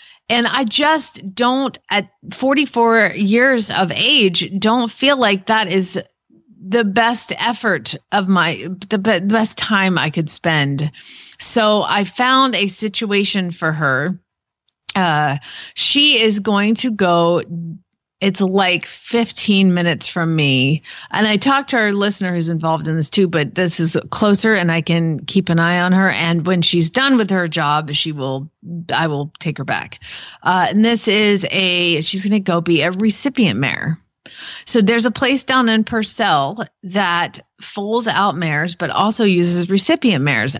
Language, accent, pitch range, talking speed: English, American, 170-225 Hz, 165 wpm